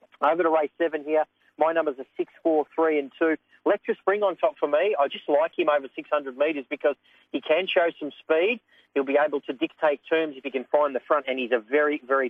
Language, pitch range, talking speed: English, 135-160 Hz, 240 wpm